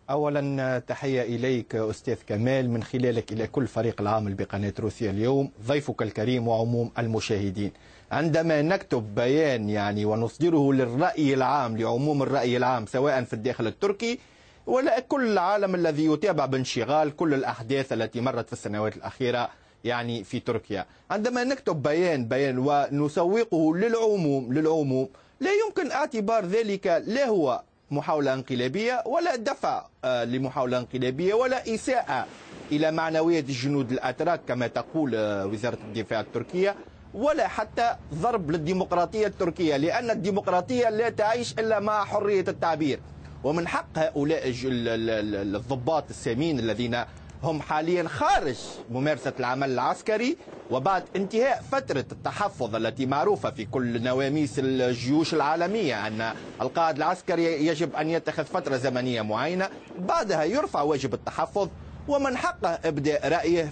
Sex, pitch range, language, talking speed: male, 120-175 Hz, Arabic, 120 wpm